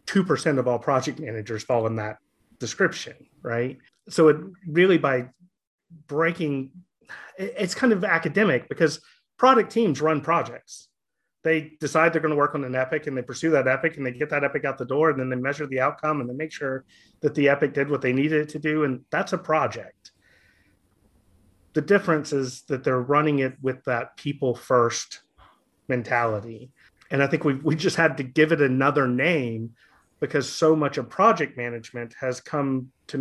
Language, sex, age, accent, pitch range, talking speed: English, male, 30-49, American, 125-155 Hz, 185 wpm